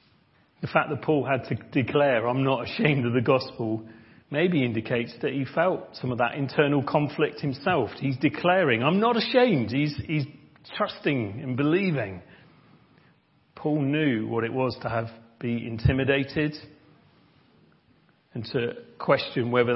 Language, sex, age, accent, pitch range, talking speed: English, male, 40-59, British, 115-145 Hz, 145 wpm